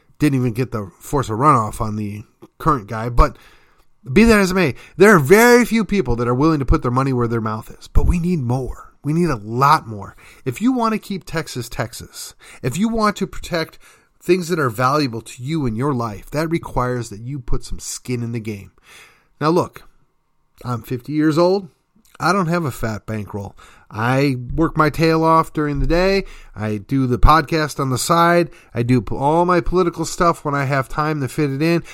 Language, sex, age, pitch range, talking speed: English, male, 30-49, 125-175 Hz, 215 wpm